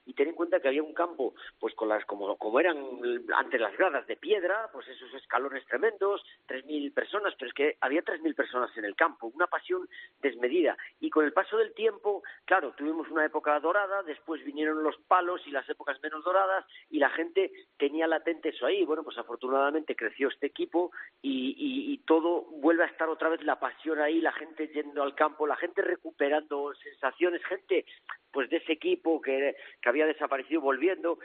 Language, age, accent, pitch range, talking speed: Spanish, 40-59, Spanish, 145-190 Hz, 195 wpm